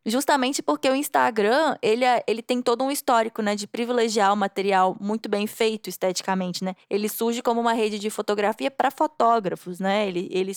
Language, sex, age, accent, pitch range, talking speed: English, female, 20-39, Brazilian, 205-250 Hz, 180 wpm